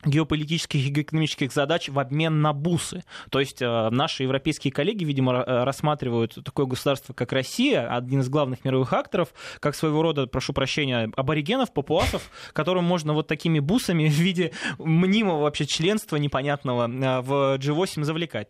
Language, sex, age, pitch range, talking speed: Russian, male, 20-39, 145-195 Hz, 145 wpm